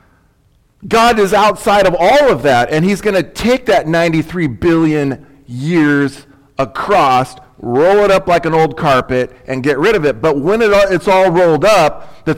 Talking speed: 175 wpm